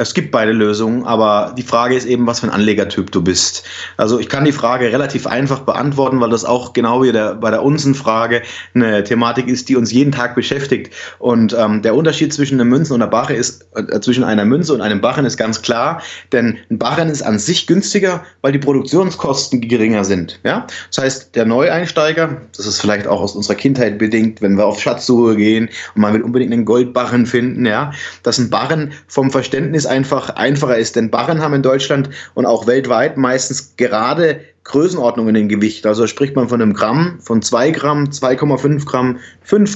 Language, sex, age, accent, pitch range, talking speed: German, male, 30-49, German, 120-145 Hz, 200 wpm